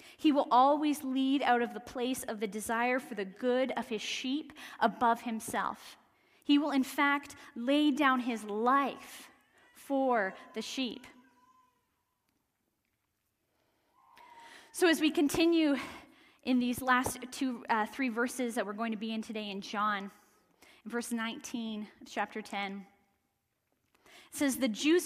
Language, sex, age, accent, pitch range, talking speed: English, female, 10-29, American, 225-295 Hz, 145 wpm